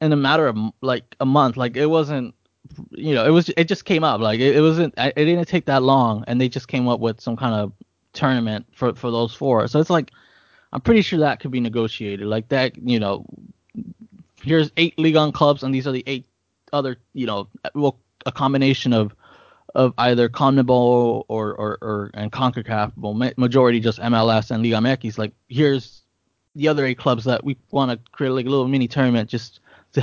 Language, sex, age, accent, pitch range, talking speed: English, male, 20-39, American, 110-135 Hz, 210 wpm